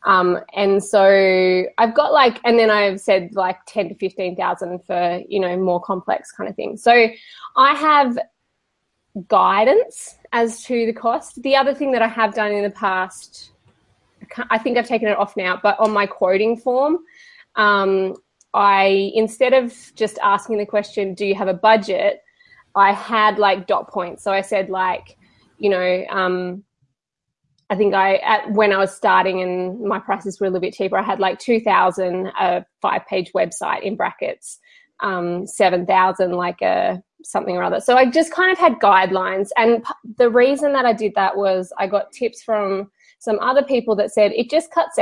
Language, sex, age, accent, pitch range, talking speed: English, female, 20-39, Australian, 190-245 Hz, 185 wpm